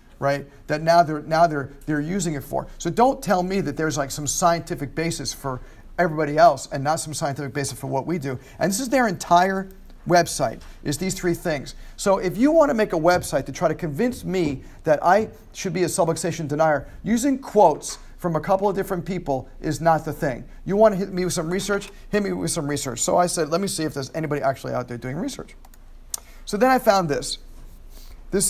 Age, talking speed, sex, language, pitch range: 40-59, 225 wpm, male, English, 150-185 Hz